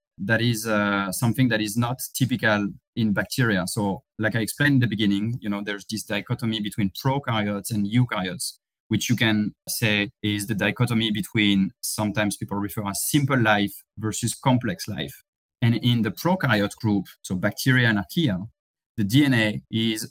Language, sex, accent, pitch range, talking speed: English, male, French, 105-120 Hz, 165 wpm